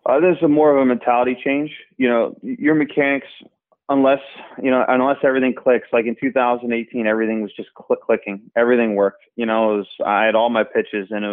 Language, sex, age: English, male, 20-39